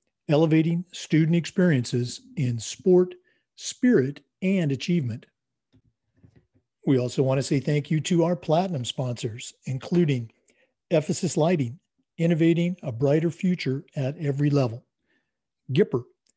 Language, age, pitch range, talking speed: English, 50-69, 130-170 Hz, 110 wpm